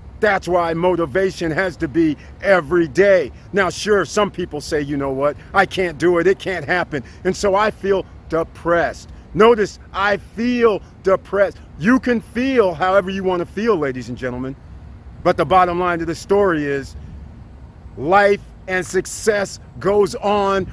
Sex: male